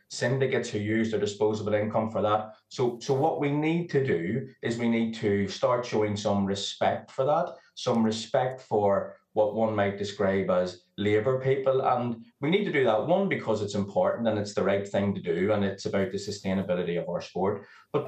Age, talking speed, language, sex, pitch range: 20-39, 205 wpm, English, male, 105-130 Hz